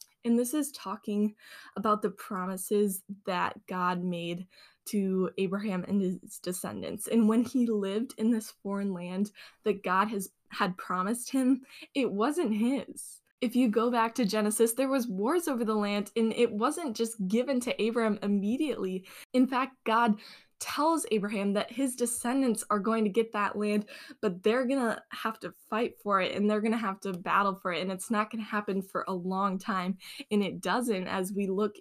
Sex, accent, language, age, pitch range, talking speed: female, American, English, 10-29, 195-235 Hz, 185 wpm